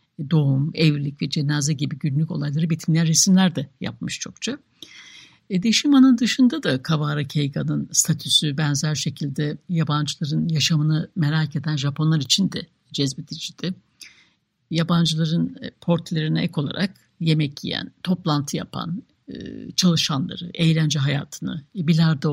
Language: Turkish